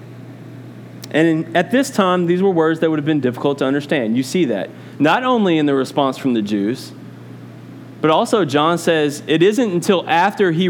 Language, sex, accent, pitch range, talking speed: English, male, American, 125-165 Hz, 190 wpm